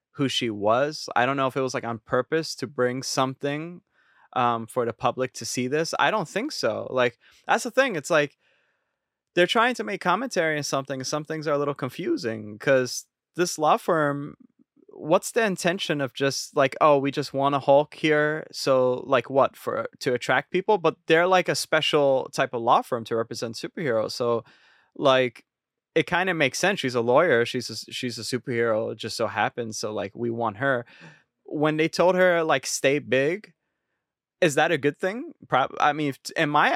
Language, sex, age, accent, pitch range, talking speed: English, male, 20-39, American, 120-155 Hz, 200 wpm